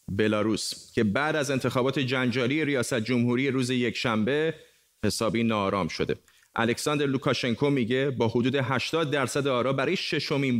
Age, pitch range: 30-49, 115-145 Hz